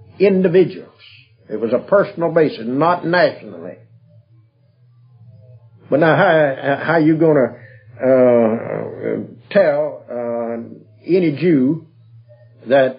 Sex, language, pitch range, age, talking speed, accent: male, English, 115-145 Hz, 60-79, 95 wpm, American